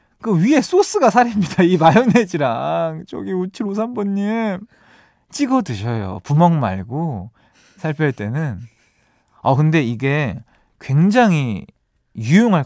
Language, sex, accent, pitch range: Korean, male, native, 120-195 Hz